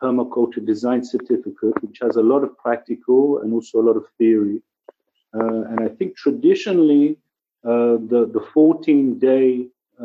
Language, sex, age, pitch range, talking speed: English, male, 50-69, 115-140 Hz, 145 wpm